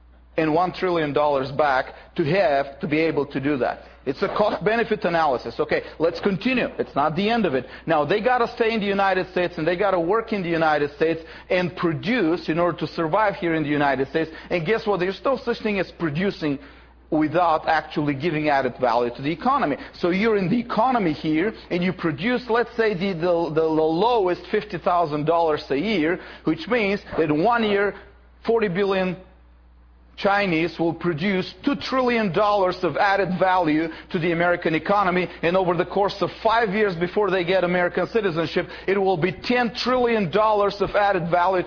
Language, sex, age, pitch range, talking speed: English, male, 40-59, 160-210 Hz, 190 wpm